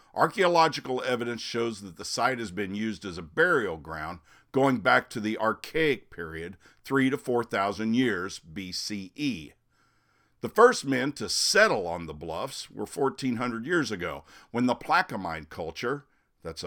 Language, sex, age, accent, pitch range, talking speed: English, male, 50-69, American, 90-130 Hz, 150 wpm